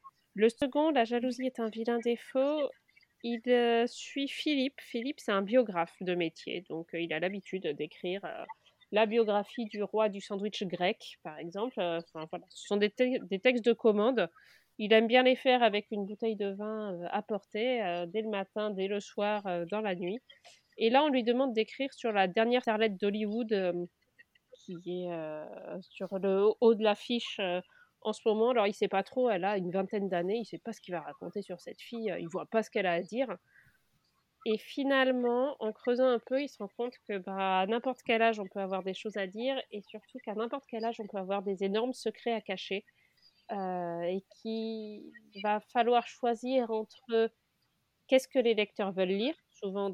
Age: 30-49